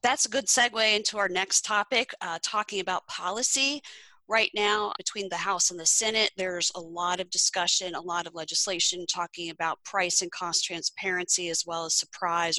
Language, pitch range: English, 165-195 Hz